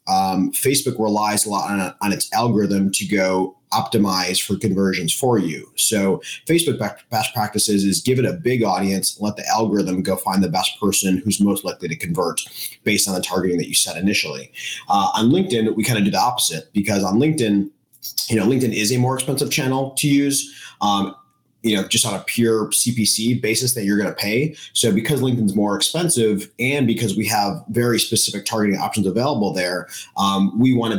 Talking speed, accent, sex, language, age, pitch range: 200 wpm, American, male, English, 30-49, 100-115 Hz